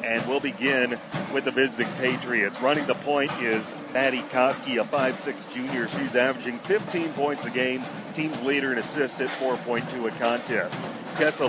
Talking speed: 160 wpm